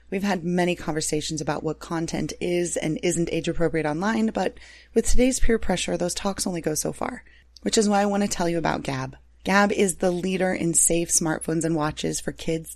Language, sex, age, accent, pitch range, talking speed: English, female, 30-49, American, 160-190 Hz, 210 wpm